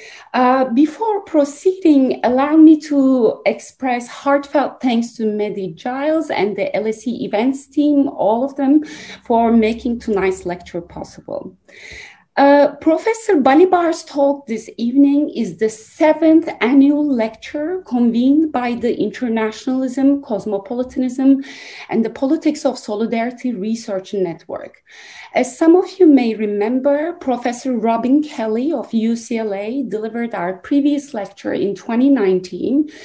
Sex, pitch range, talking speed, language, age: female, 220-290 Hz, 120 wpm, English, 30-49